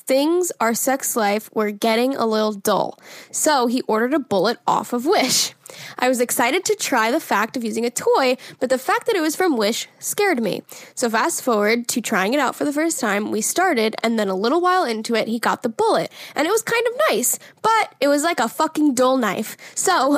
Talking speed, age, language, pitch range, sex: 230 wpm, 10-29, English, 235-310 Hz, female